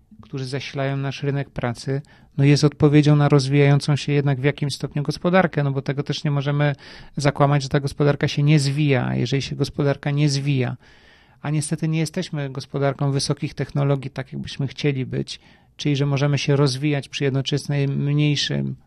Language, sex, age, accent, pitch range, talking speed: Polish, male, 40-59, native, 140-150 Hz, 170 wpm